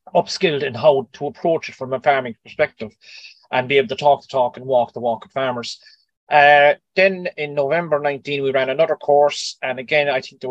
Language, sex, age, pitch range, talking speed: English, male, 30-49, 130-170 Hz, 210 wpm